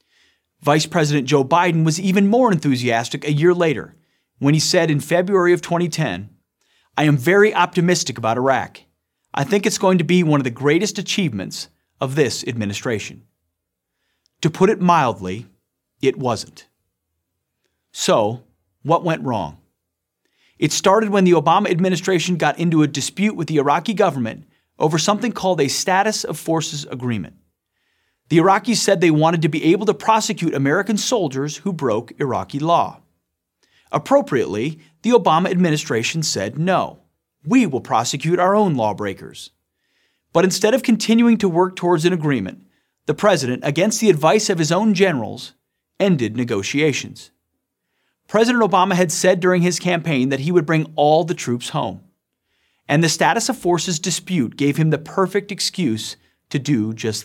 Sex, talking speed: male, 155 wpm